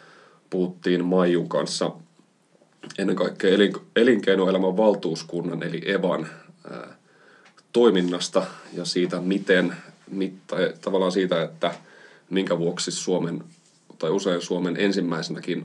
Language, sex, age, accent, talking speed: Finnish, male, 30-49, native, 90 wpm